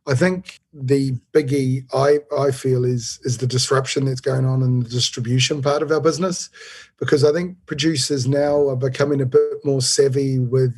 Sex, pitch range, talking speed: male, 130-150 Hz, 185 wpm